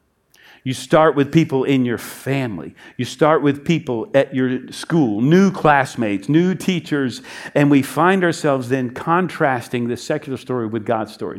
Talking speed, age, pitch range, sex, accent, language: 160 wpm, 50-69, 130-180 Hz, male, American, English